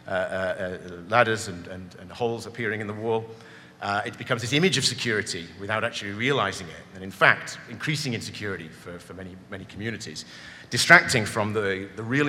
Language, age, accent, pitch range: French, 40-59, British, 95-125 Hz